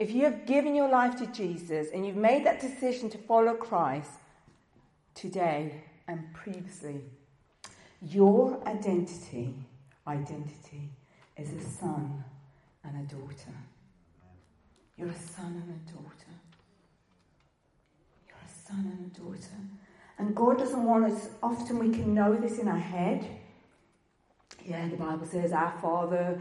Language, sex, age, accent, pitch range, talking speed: English, female, 40-59, British, 155-220 Hz, 135 wpm